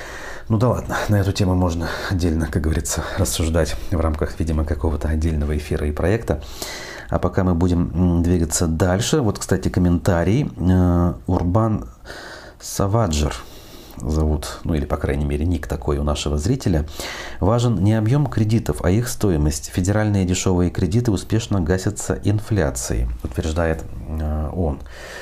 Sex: male